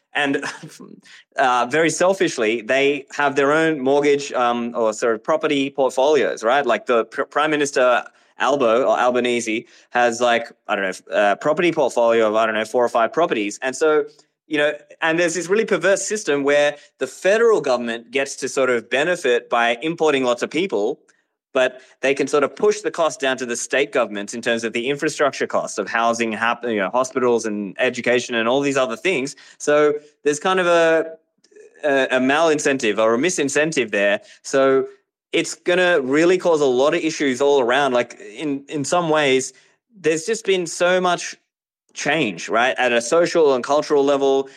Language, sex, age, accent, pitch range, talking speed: English, male, 20-39, Australian, 125-155 Hz, 180 wpm